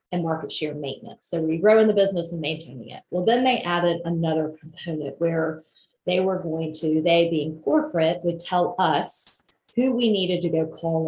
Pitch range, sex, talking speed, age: 155-185 Hz, female, 195 wpm, 30-49